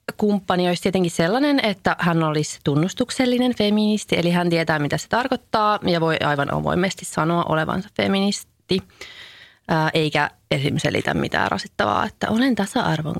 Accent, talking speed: Finnish, 135 wpm